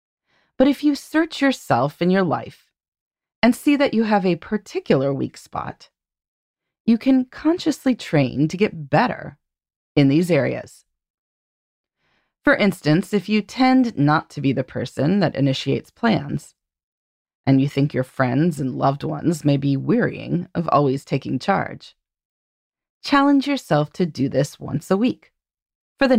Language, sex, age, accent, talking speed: English, female, 30-49, American, 150 wpm